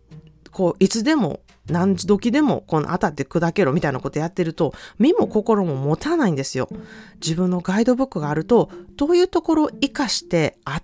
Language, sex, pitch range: Japanese, female, 155-220 Hz